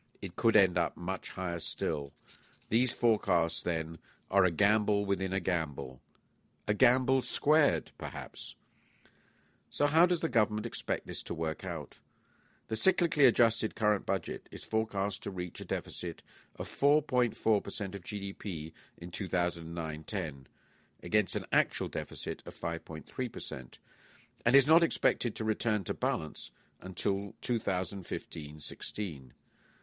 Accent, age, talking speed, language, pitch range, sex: British, 50-69, 125 wpm, English, 85-110 Hz, male